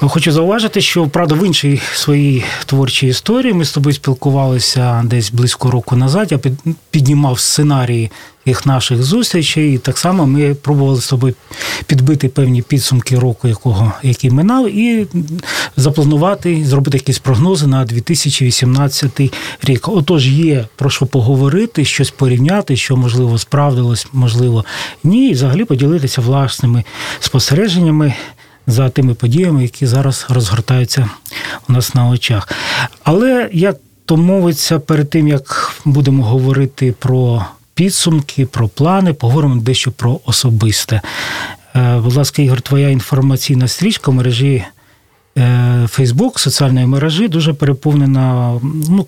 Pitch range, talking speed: 125-150 Hz, 125 wpm